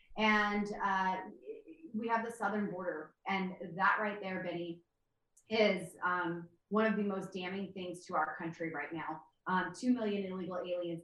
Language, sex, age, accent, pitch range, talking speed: English, female, 30-49, American, 175-210 Hz, 165 wpm